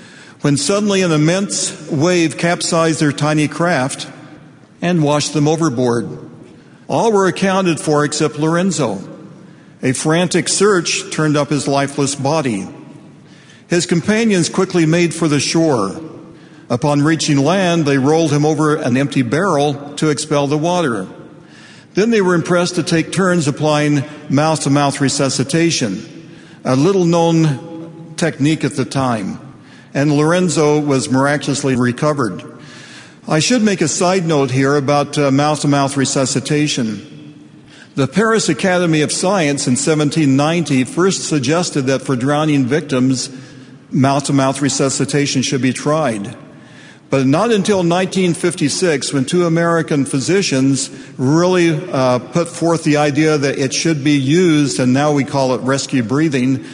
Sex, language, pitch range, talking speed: male, English, 140-170 Hz, 135 wpm